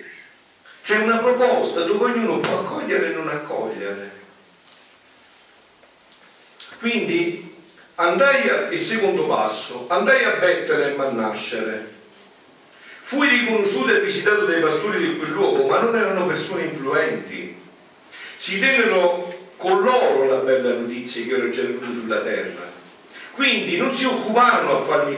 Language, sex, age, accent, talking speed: Italian, male, 50-69, native, 125 wpm